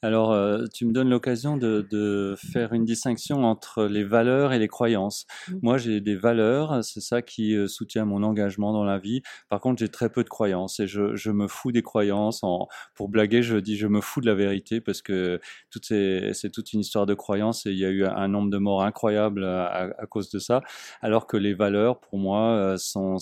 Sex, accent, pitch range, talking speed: male, French, 95-105 Hz, 215 wpm